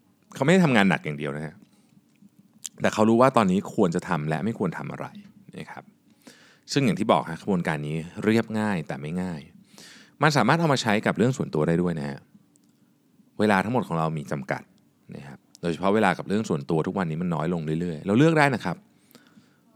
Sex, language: male, Thai